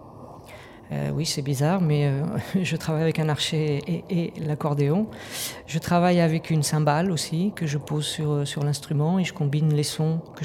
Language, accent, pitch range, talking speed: French, French, 140-160 Hz, 185 wpm